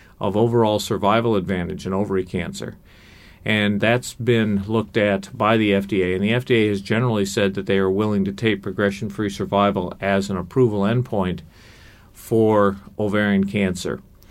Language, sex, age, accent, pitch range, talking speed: English, male, 50-69, American, 95-115 Hz, 150 wpm